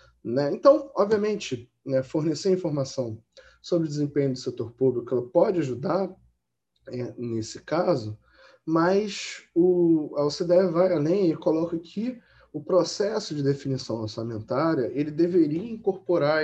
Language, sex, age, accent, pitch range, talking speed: Portuguese, male, 10-29, Brazilian, 135-180 Hz, 125 wpm